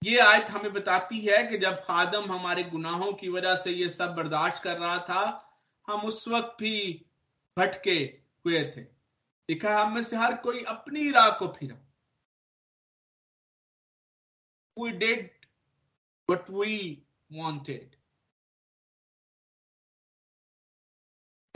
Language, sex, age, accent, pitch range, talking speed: Hindi, male, 50-69, native, 165-210 Hz, 110 wpm